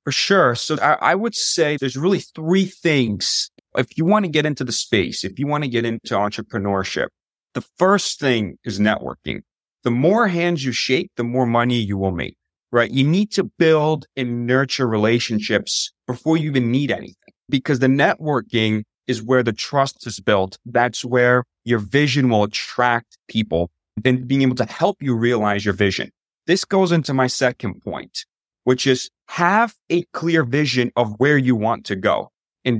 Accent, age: American, 30-49